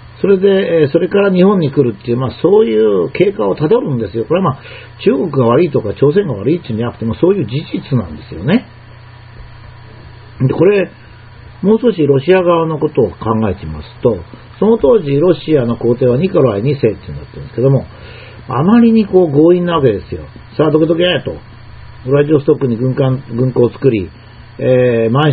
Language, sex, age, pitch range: Japanese, male, 40-59, 120-165 Hz